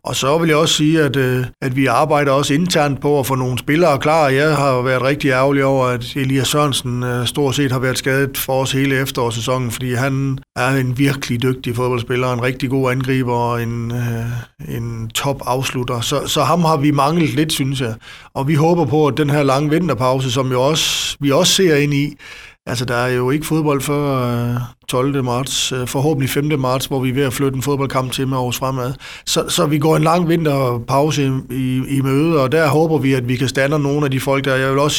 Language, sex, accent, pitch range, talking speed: Danish, male, native, 130-145 Hz, 220 wpm